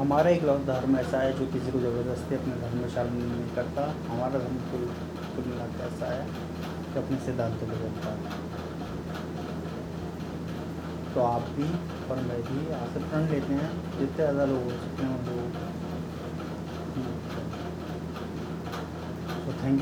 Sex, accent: male, native